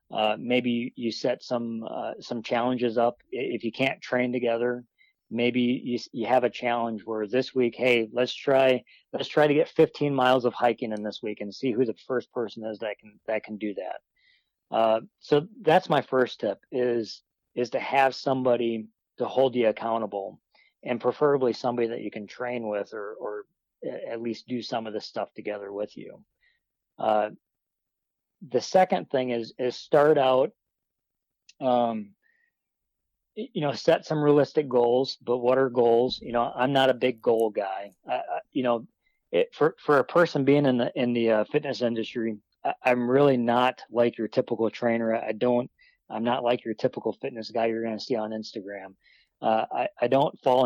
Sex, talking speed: male, 185 wpm